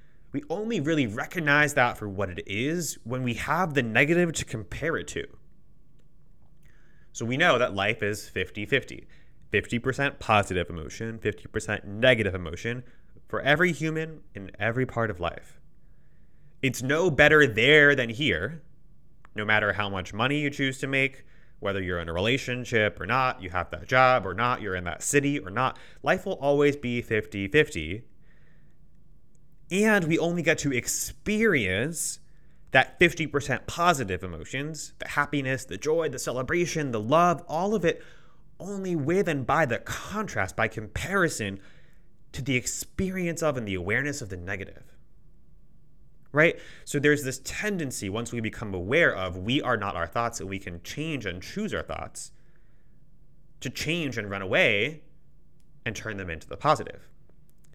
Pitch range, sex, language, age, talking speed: 105-155 Hz, male, English, 20-39, 160 wpm